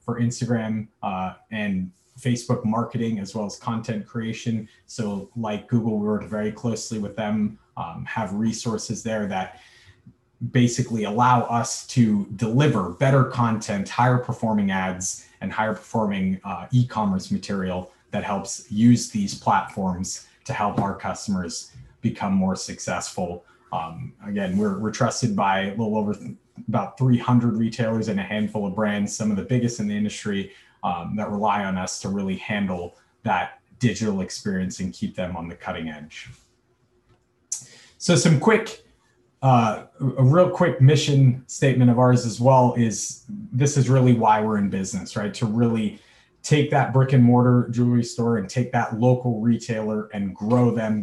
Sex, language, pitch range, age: male, English, 105-125 Hz, 30-49